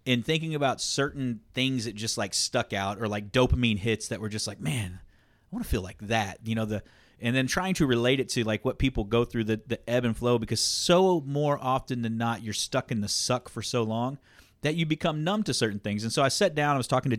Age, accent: 30-49, American